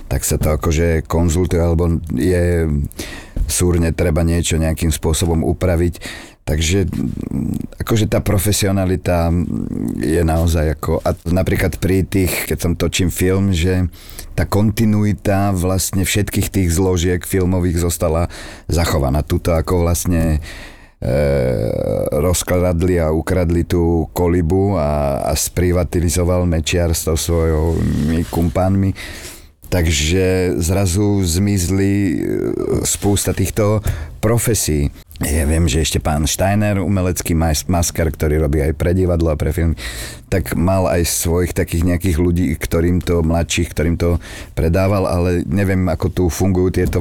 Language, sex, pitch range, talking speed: Slovak, male, 80-95 Hz, 120 wpm